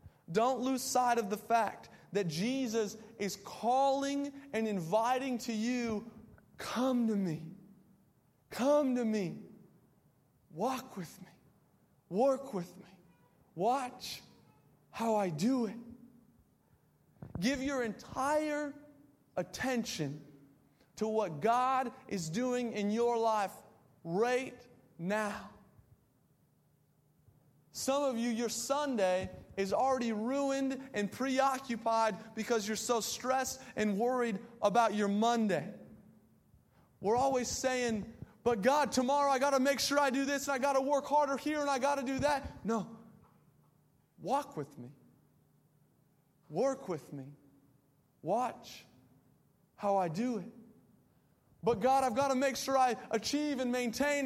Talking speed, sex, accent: 125 wpm, male, American